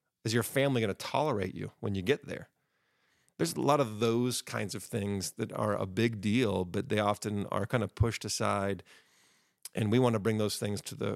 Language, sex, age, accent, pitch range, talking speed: English, male, 40-59, American, 100-115 Hz, 220 wpm